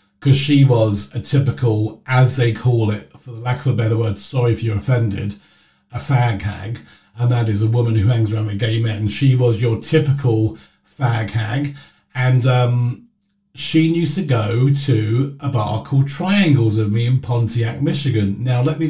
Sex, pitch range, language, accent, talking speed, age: male, 110-140 Hz, English, British, 180 wpm, 40-59